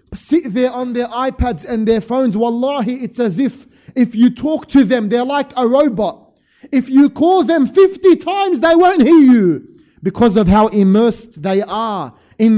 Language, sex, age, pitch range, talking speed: English, male, 20-39, 205-255 Hz, 180 wpm